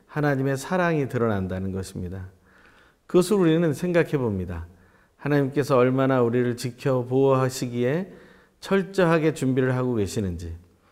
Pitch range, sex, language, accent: 100-140 Hz, male, Korean, native